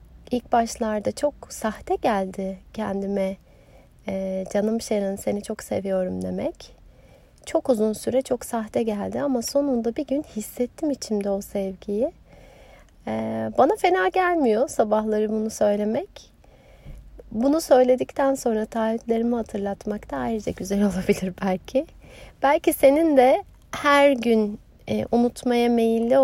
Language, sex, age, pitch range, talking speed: Turkish, female, 30-49, 200-265 Hz, 110 wpm